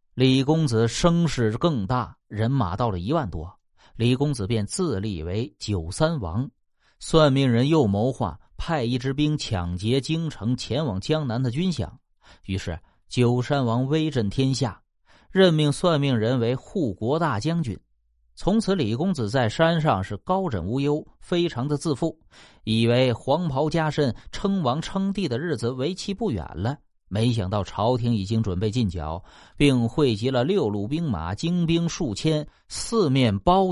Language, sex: Chinese, male